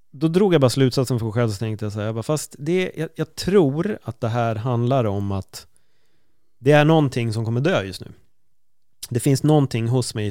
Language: Swedish